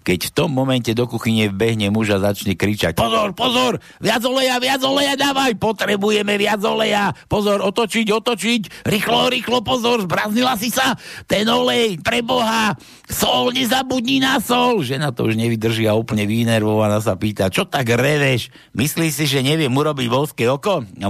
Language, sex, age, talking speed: Slovak, male, 60-79, 160 wpm